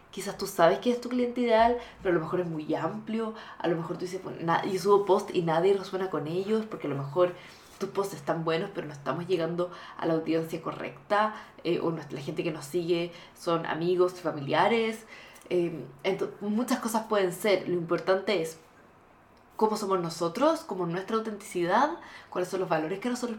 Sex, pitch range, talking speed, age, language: female, 165-205 Hz, 195 wpm, 20-39, Spanish